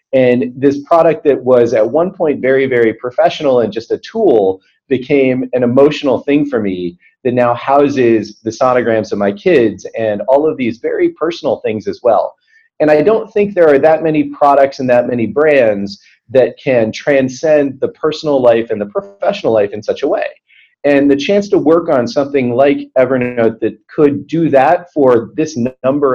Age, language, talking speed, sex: 30-49, English, 185 wpm, male